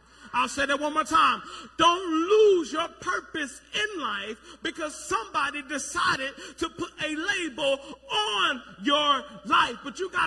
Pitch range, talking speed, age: 290-355 Hz, 145 wpm, 40-59